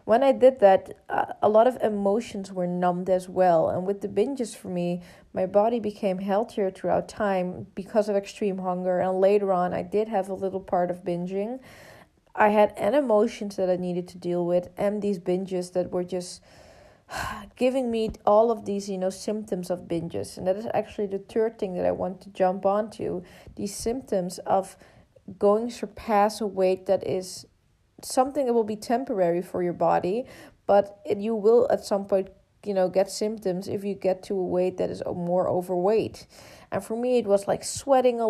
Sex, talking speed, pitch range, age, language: female, 195 wpm, 185-215 Hz, 20-39, English